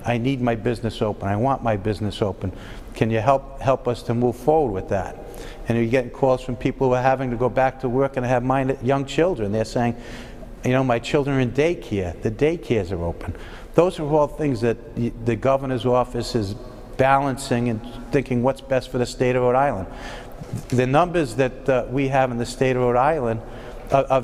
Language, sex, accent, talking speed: English, male, American, 210 wpm